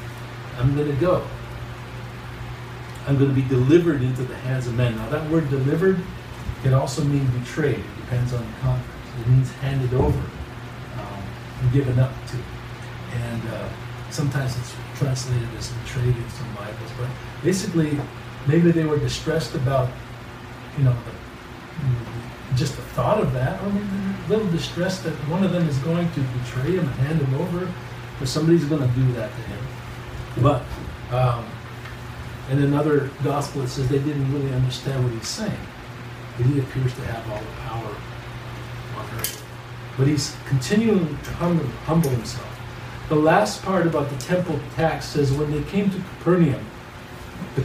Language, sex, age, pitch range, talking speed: English, male, 50-69, 120-150 Hz, 165 wpm